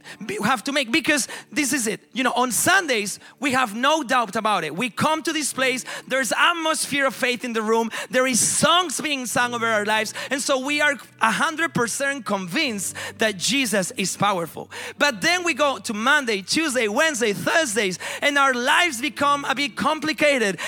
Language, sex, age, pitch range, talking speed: Swedish, male, 30-49, 210-290 Hz, 190 wpm